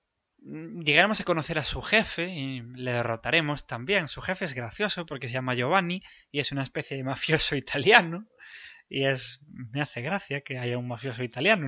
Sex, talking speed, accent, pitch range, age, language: male, 180 wpm, Spanish, 125-190 Hz, 20-39, English